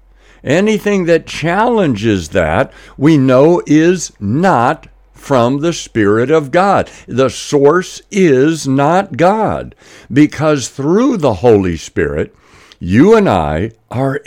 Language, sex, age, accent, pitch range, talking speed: English, male, 60-79, American, 120-180 Hz, 115 wpm